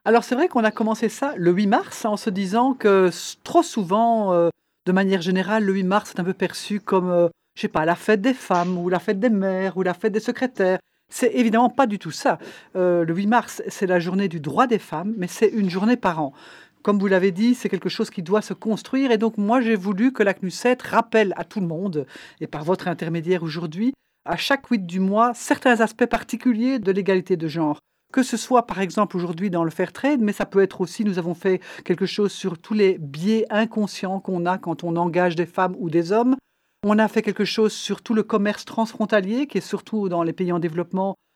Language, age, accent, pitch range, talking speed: French, 50-69, French, 185-225 Hz, 240 wpm